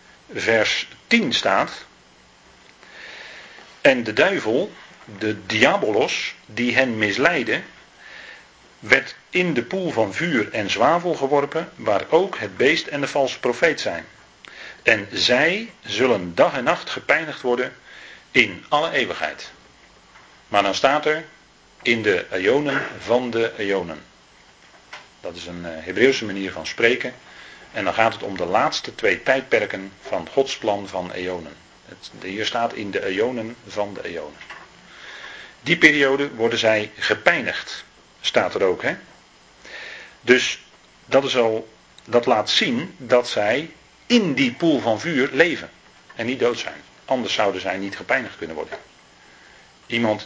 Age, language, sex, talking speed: 40-59, Dutch, male, 135 wpm